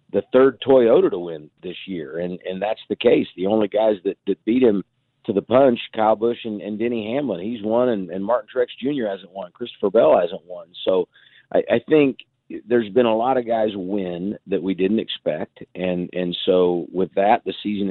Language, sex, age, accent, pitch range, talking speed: English, male, 50-69, American, 95-120 Hz, 210 wpm